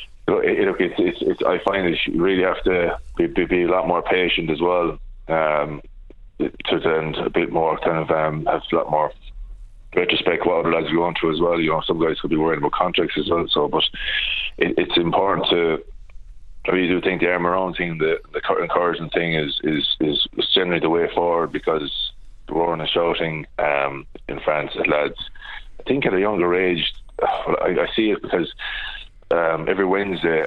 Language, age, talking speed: English, 20-39, 195 wpm